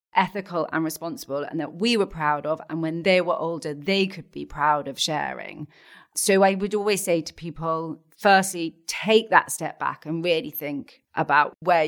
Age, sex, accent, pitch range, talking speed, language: 30-49, female, British, 150-195 Hz, 185 wpm, English